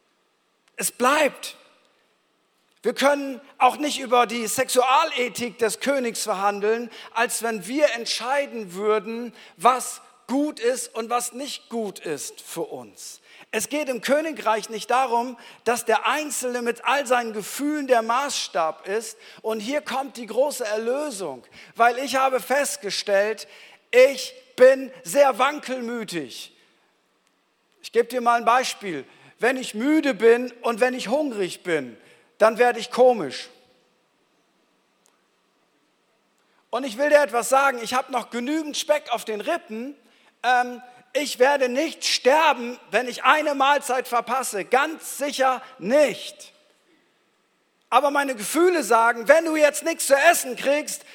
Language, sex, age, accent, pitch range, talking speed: German, male, 50-69, German, 235-285 Hz, 135 wpm